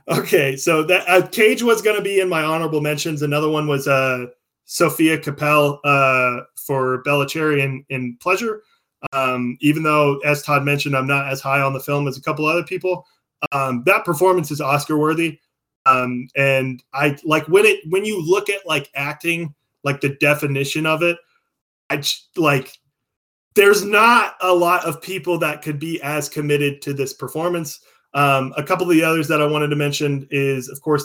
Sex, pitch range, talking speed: male, 140-170 Hz, 190 wpm